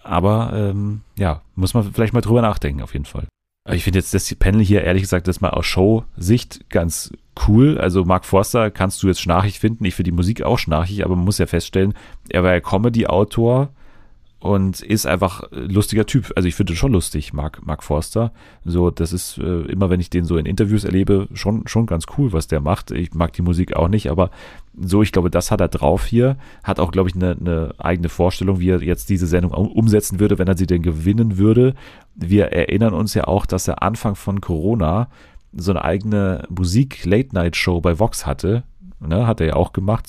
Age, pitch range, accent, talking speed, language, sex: 30-49, 90-105 Hz, German, 215 wpm, German, male